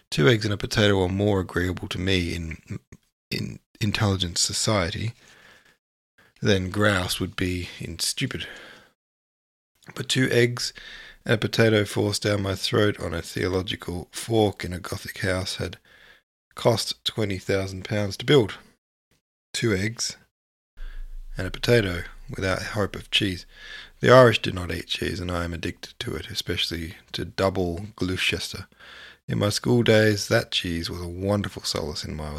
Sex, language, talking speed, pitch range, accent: male, English, 150 wpm, 90-115 Hz, Australian